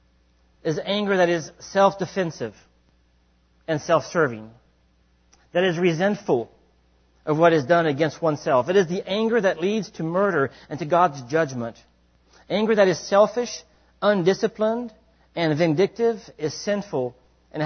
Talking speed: 130 wpm